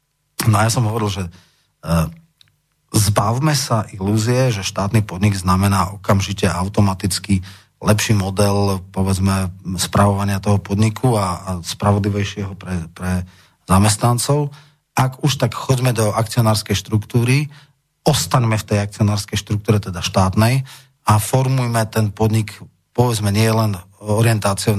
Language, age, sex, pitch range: Slovak, 30-49, male, 100-115 Hz